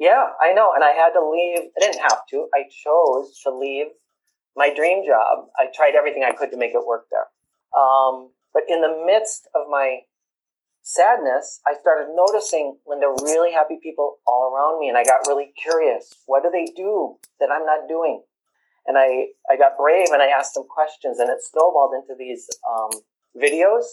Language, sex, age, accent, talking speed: English, male, 40-59, American, 200 wpm